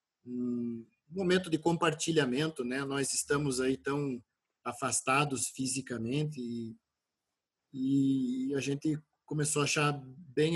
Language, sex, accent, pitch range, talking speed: Portuguese, male, Brazilian, 125-145 Hz, 110 wpm